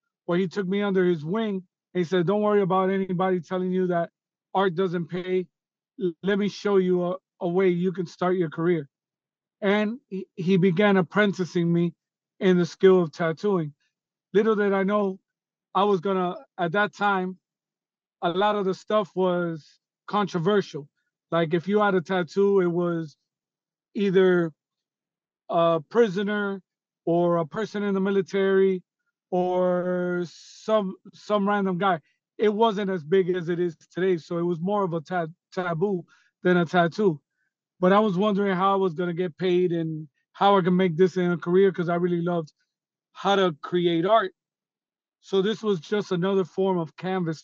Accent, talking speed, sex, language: American, 175 wpm, male, English